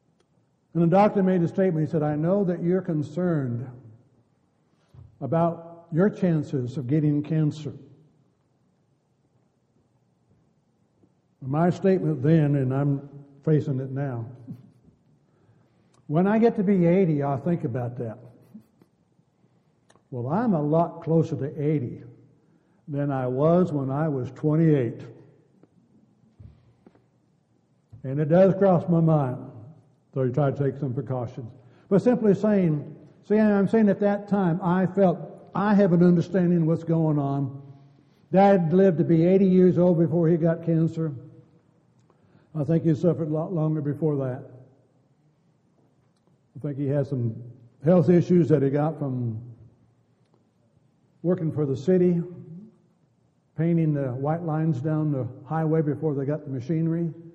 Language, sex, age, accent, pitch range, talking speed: English, male, 60-79, American, 140-170 Hz, 135 wpm